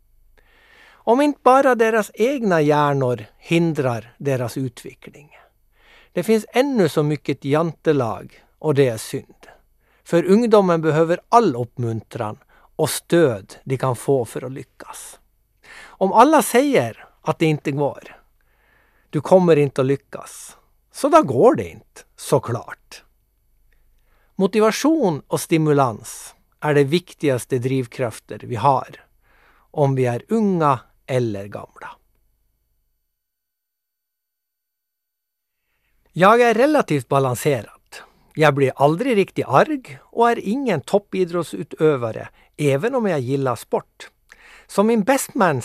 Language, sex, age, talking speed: Swedish, male, 60-79, 115 wpm